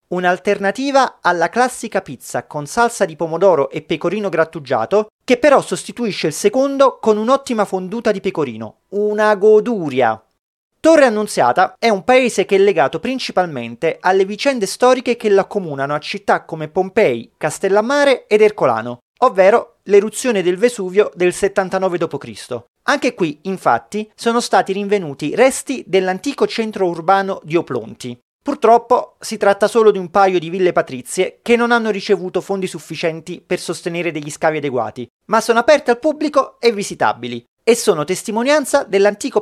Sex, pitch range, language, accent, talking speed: male, 170-235 Hz, Italian, native, 145 wpm